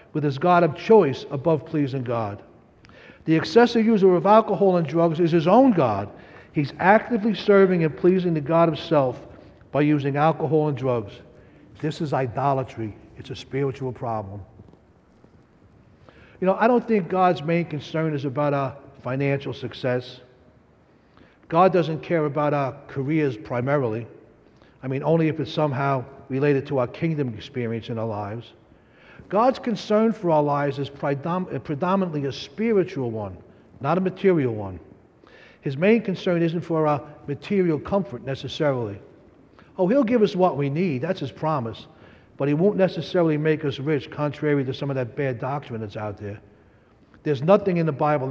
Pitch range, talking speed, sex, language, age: 125-170 Hz, 160 wpm, male, English, 60-79